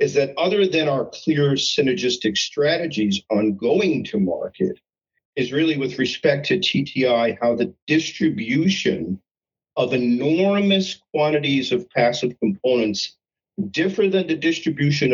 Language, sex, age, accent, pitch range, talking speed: English, male, 50-69, American, 125-185 Hz, 125 wpm